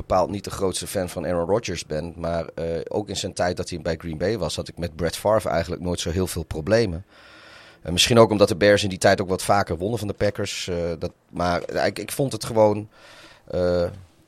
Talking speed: 240 wpm